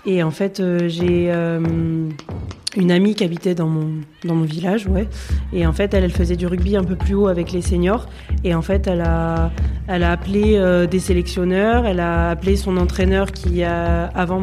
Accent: French